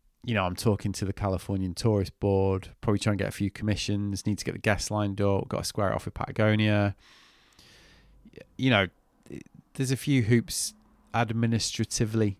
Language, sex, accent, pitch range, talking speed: English, male, British, 100-120 Hz, 180 wpm